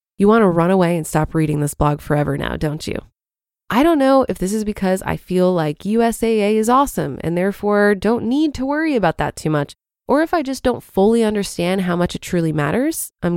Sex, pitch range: female, 175-245 Hz